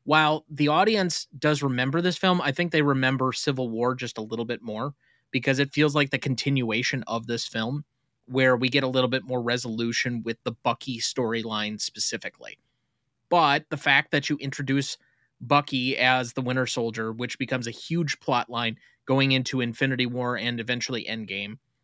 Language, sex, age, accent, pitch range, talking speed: English, male, 20-39, American, 125-155 Hz, 175 wpm